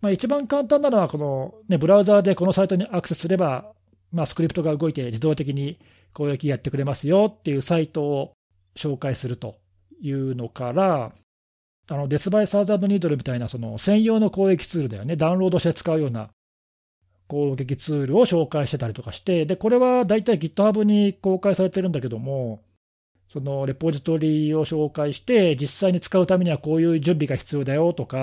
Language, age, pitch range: Japanese, 40-59, 120-185 Hz